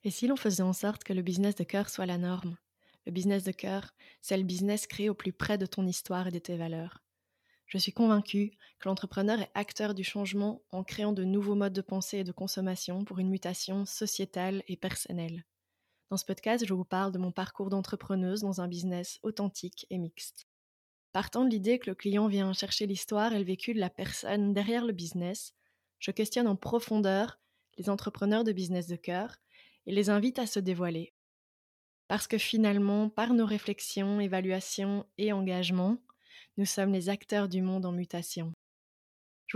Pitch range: 185-215 Hz